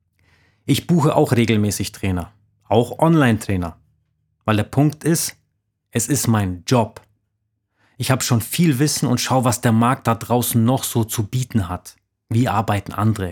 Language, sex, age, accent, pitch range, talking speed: German, male, 30-49, German, 100-125 Hz, 160 wpm